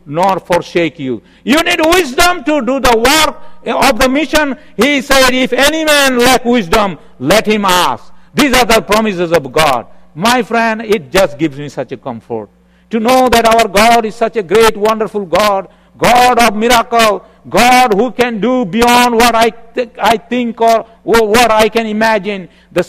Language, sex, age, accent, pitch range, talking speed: English, male, 60-79, Indian, 175-255 Hz, 175 wpm